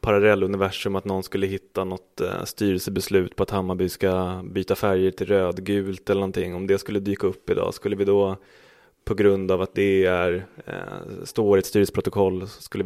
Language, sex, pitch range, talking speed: Swedish, male, 95-115 Hz, 180 wpm